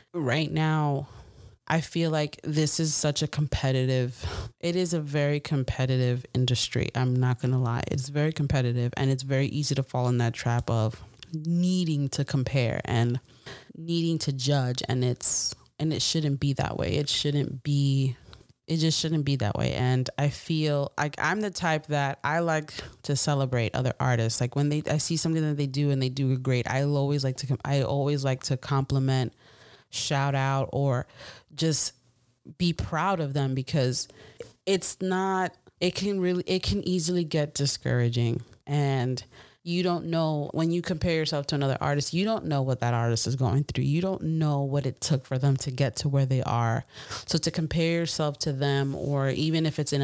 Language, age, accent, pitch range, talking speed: English, 30-49, American, 130-155 Hz, 190 wpm